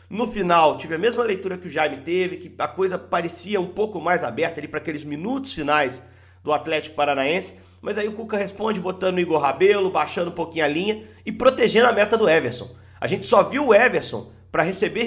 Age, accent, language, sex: 40-59, Brazilian, Portuguese, male